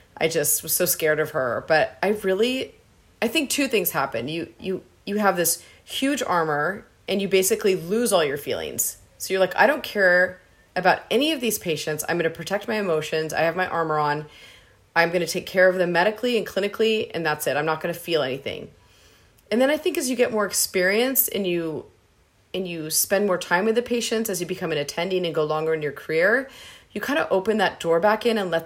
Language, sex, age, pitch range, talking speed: English, female, 30-49, 160-205 Hz, 225 wpm